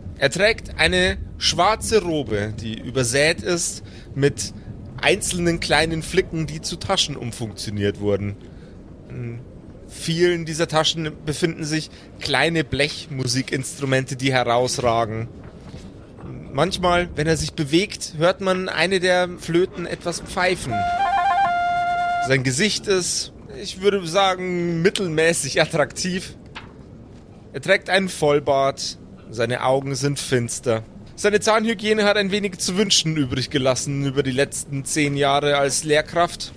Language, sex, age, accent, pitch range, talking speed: German, male, 30-49, German, 130-175 Hz, 115 wpm